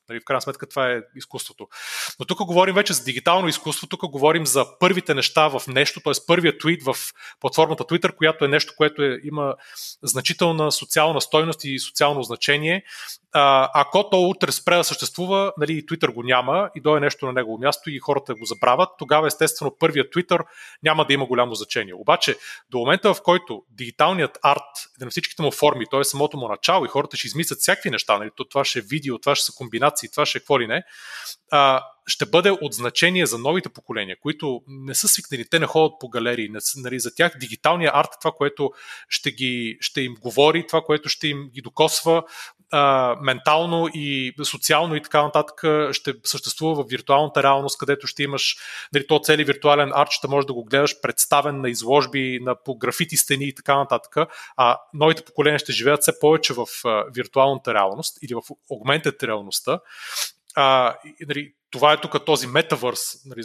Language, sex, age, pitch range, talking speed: Bulgarian, male, 30-49, 130-155 Hz, 185 wpm